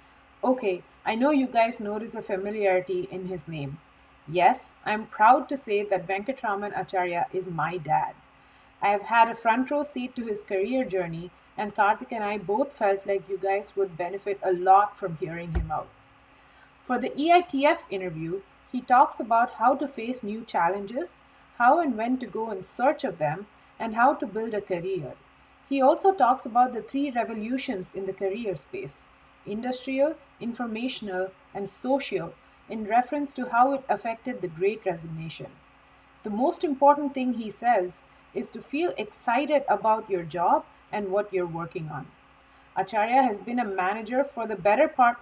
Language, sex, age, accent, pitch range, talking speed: English, female, 30-49, Indian, 190-255 Hz, 170 wpm